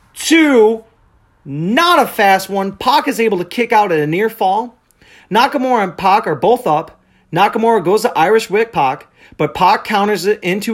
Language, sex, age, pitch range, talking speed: English, male, 30-49, 175-255 Hz, 180 wpm